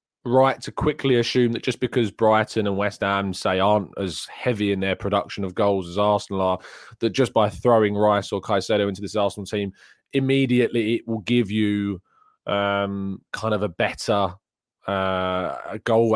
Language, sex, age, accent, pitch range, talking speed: English, male, 20-39, British, 100-115 Hz, 170 wpm